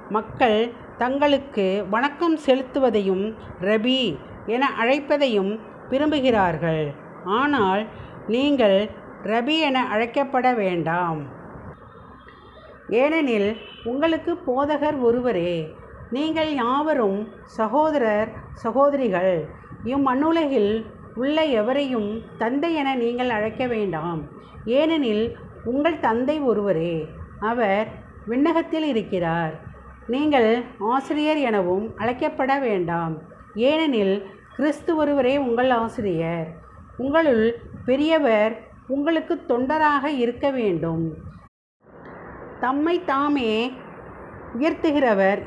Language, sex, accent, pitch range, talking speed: Tamil, female, native, 205-280 Hz, 75 wpm